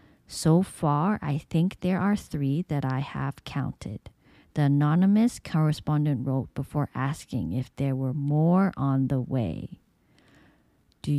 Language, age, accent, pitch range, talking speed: English, 40-59, American, 135-170 Hz, 135 wpm